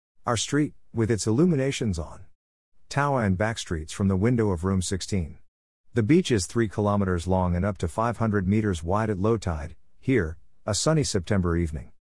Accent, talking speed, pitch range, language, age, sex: American, 175 wpm, 85-115 Hz, English, 50-69, male